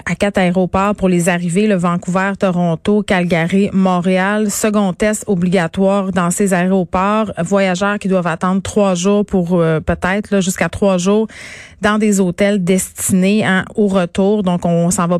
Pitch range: 180-210 Hz